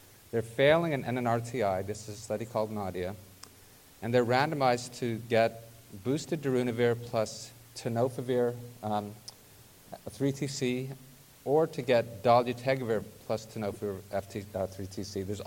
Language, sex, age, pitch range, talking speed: English, male, 40-59, 105-130 Hz, 120 wpm